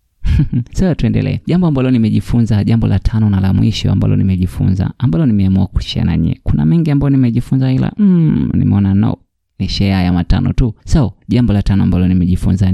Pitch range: 95-120 Hz